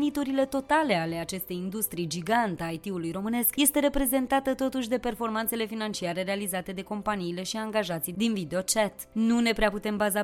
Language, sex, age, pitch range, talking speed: Romanian, female, 20-39, 190-245 Hz, 160 wpm